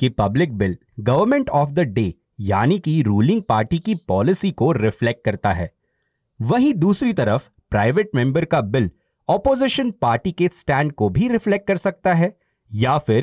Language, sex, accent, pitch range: Hindi, male, native, 115-180 Hz